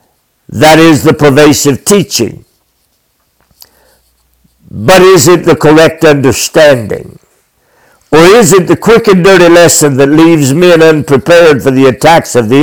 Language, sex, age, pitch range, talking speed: English, male, 60-79, 150-185 Hz, 135 wpm